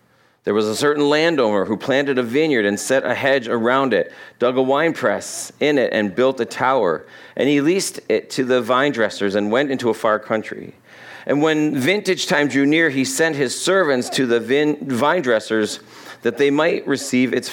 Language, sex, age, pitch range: English, male, 40-59, 125-155 Hz